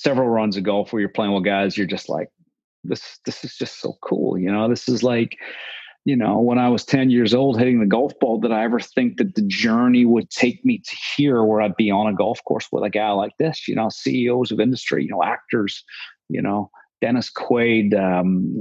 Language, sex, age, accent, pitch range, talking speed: English, male, 40-59, American, 110-130 Hz, 230 wpm